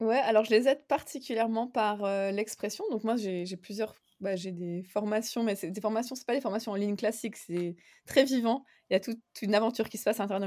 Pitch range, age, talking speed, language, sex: 190-220 Hz, 20-39, 250 wpm, French, female